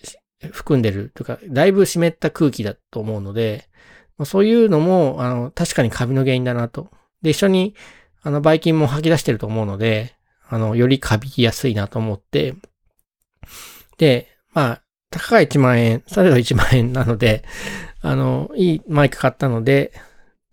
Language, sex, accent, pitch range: Japanese, male, native, 115-160 Hz